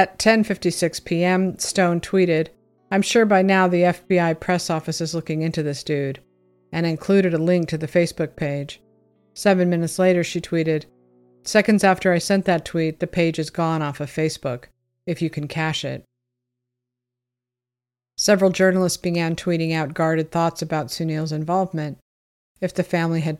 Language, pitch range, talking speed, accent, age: English, 150-180 Hz, 160 wpm, American, 50-69